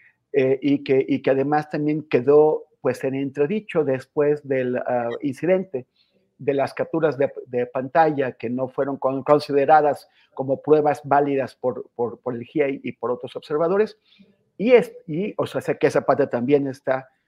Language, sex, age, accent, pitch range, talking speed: Spanish, male, 50-69, Mexican, 130-165 Hz, 170 wpm